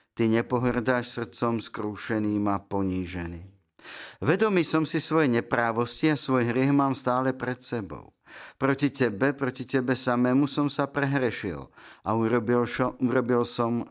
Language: Slovak